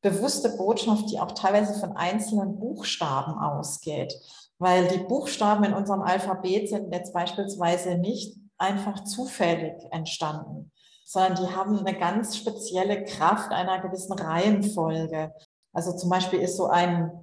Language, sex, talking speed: German, female, 130 wpm